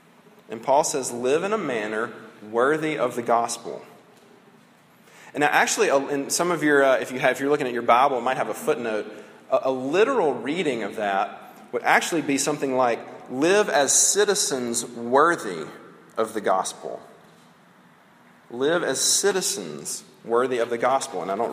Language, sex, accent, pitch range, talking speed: English, male, American, 125-180 Hz, 170 wpm